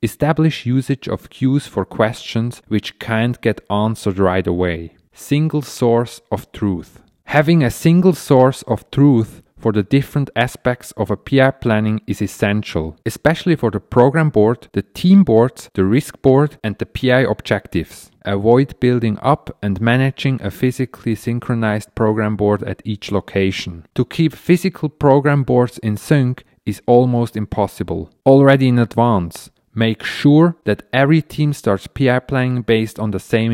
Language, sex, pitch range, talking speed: English, male, 105-135 Hz, 150 wpm